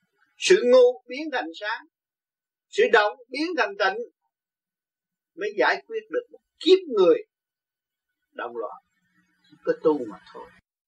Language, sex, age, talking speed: Vietnamese, male, 30-49, 125 wpm